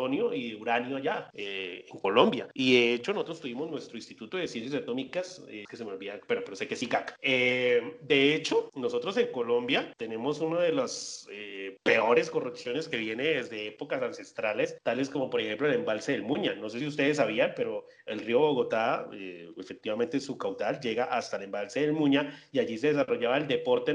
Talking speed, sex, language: 195 wpm, male, Spanish